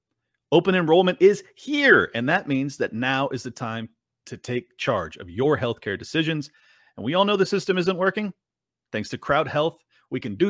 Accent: American